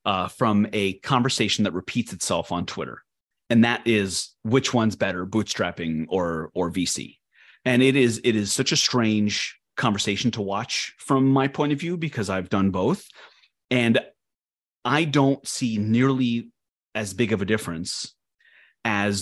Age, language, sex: 30-49, English, male